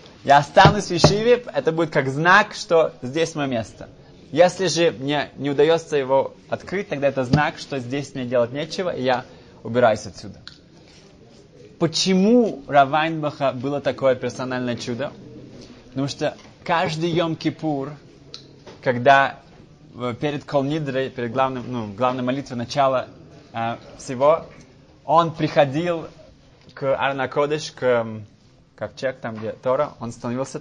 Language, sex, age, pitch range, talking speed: Russian, male, 20-39, 130-160 Hz, 125 wpm